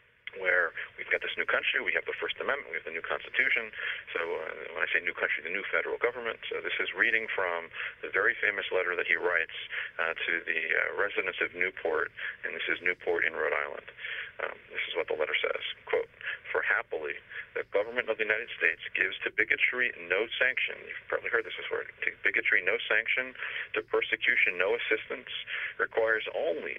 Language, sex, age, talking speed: English, male, 40-59, 200 wpm